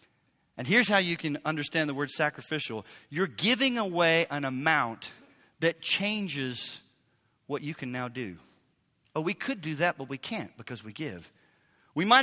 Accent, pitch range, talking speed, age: American, 145-210 Hz, 165 wpm, 40-59